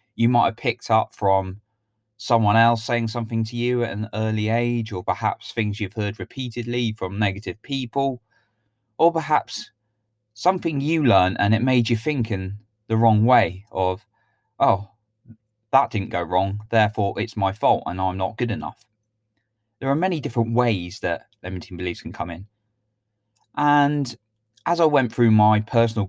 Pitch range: 95-115 Hz